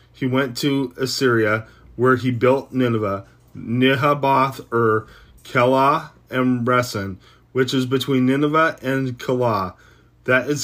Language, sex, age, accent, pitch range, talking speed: English, male, 30-49, American, 120-140 Hz, 120 wpm